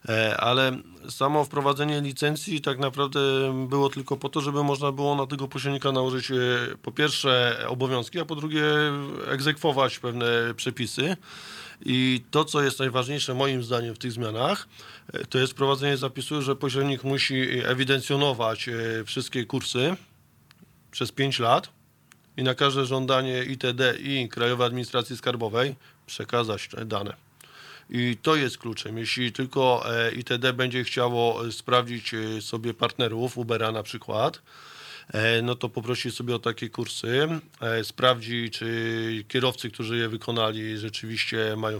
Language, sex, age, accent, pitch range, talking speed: Polish, male, 20-39, native, 115-135 Hz, 130 wpm